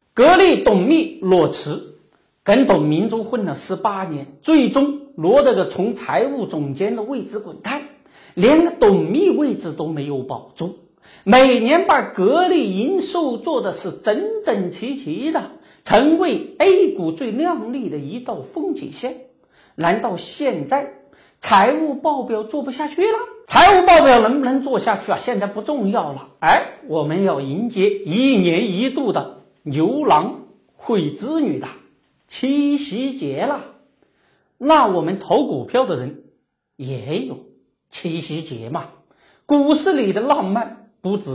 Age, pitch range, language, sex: 50-69, 190-305 Hz, Chinese, male